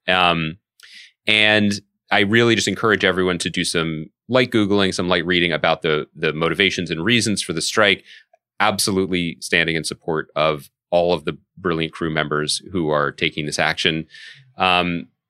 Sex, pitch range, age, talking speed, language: male, 90-125 Hz, 30-49, 160 wpm, English